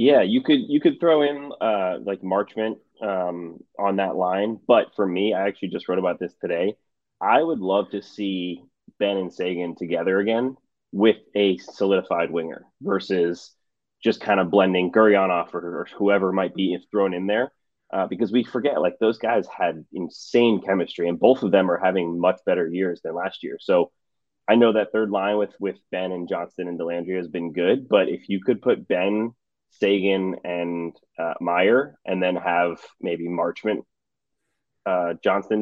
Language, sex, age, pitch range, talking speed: English, male, 20-39, 85-105 Hz, 180 wpm